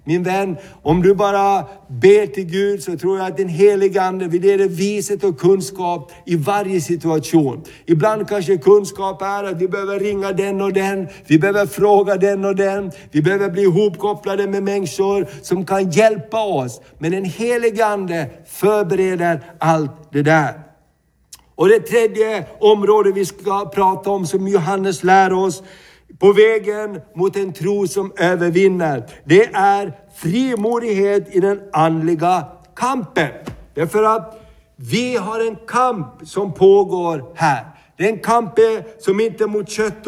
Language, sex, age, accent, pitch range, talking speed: Swedish, male, 60-79, native, 180-210 Hz, 150 wpm